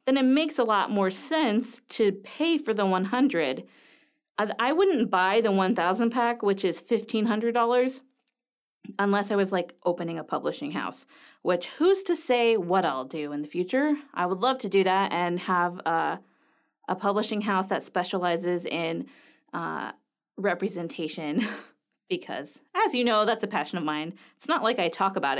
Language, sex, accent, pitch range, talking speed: English, female, American, 185-250 Hz, 170 wpm